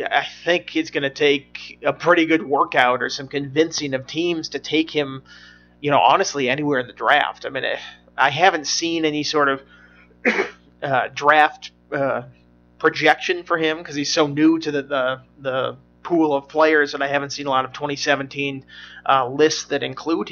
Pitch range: 130-155 Hz